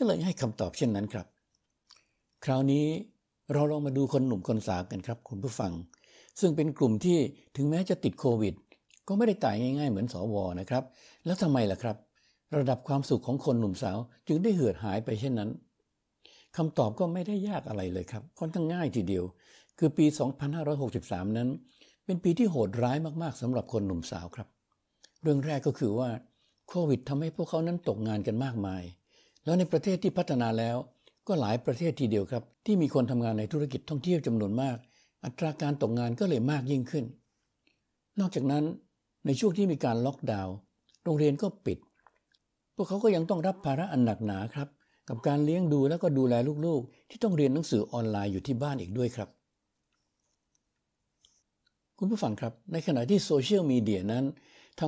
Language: Thai